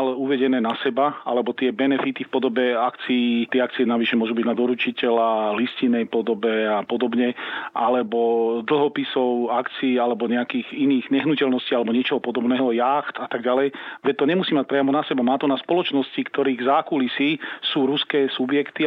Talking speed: 155 wpm